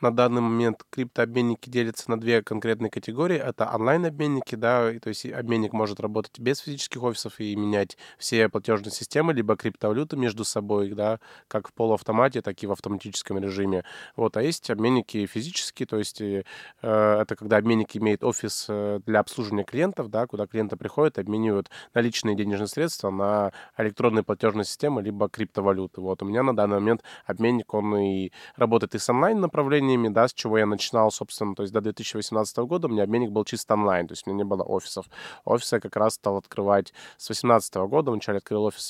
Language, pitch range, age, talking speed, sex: Russian, 100-120 Hz, 20-39, 185 wpm, male